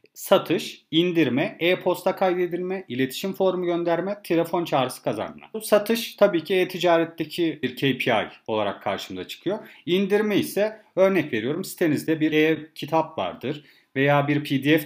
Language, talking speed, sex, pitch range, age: Turkish, 125 wpm, male, 145-180 Hz, 40-59